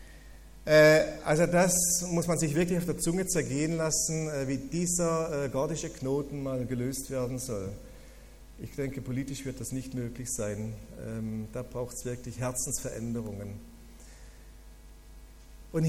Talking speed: 125 wpm